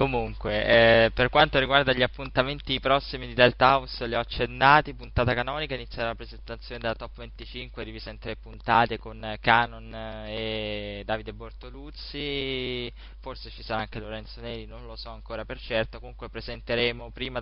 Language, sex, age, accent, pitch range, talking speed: Italian, male, 20-39, native, 115-125 Hz, 160 wpm